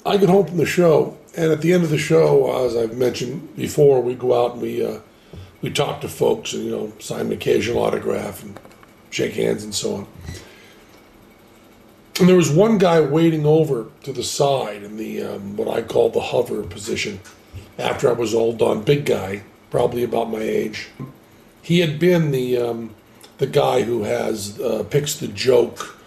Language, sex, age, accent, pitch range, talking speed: English, male, 50-69, American, 110-150 Hz, 195 wpm